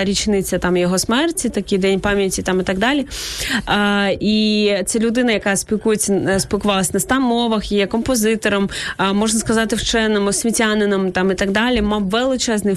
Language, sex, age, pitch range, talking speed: Ukrainian, female, 20-39, 195-230 Hz, 155 wpm